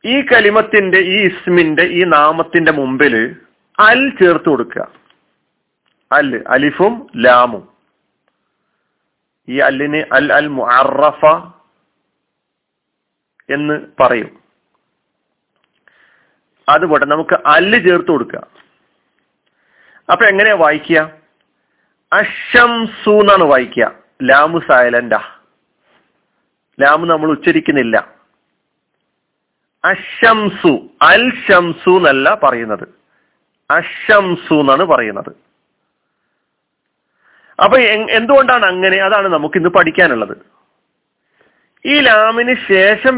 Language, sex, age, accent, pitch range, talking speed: Malayalam, male, 40-59, native, 160-225 Hz, 70 wpm